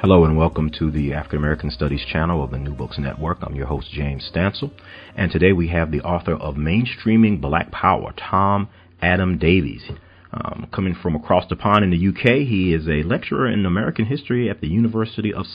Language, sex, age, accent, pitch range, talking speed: English, male, 40-59, American, 80-95 Hz, 195 wpm